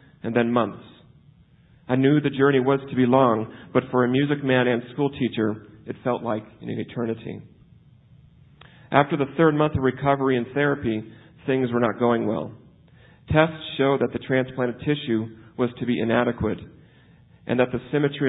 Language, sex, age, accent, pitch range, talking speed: English, male, 40-59, American, 120-140 Hz, 165 wpm